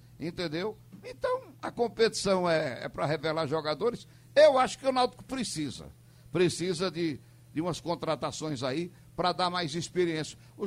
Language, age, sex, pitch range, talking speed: Portuguese, 60-79, male, 155-215 Hz, 145 wpm